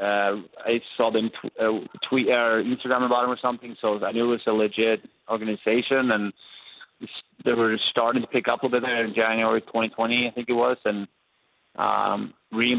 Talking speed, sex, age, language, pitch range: 195 wpm, male, 30-49, English, 105-115 Hz